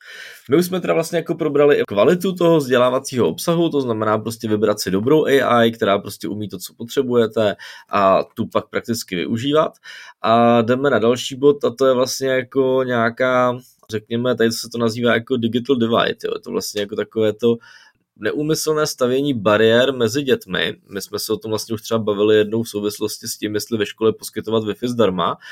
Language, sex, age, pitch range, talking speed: Czech, male, 20-39, 110-130 Hz, 190 wpm